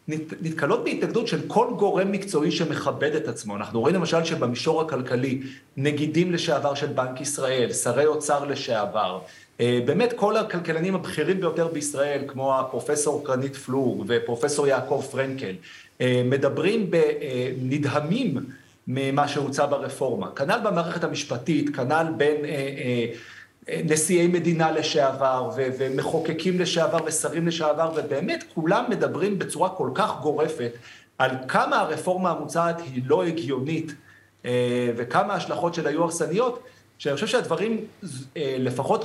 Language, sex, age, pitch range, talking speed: Hebrew, male, 40-59, 135-170 Hz, 115 wpm